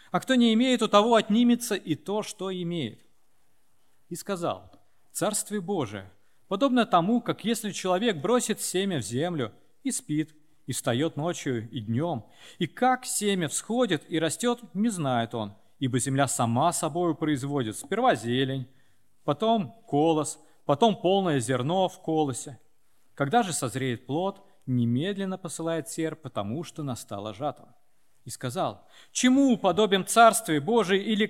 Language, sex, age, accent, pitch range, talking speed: Russian, male, 40-59, native, 125-205 Hz, 140 wpm